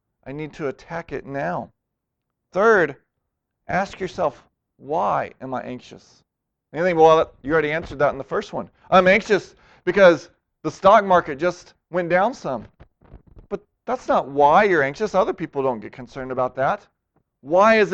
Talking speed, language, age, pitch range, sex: 165 wpm, English, 40-59, 140-200 Hz, male